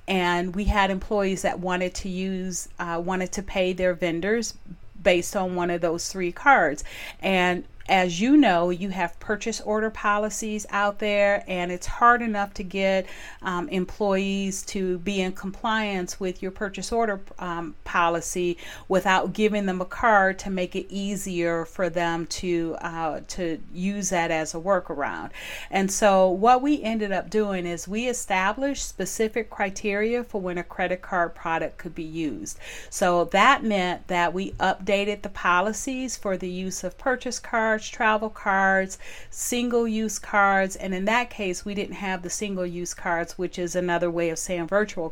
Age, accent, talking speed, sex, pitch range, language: 40-59, American, 165 wpm, female, 180-215 Hz, English